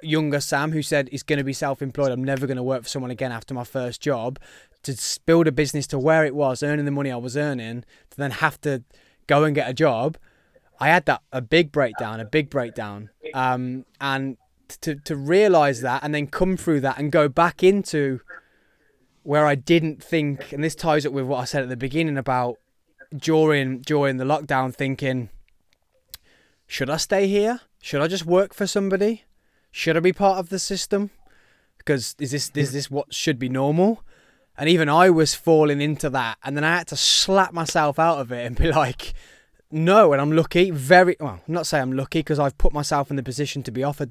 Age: 20-39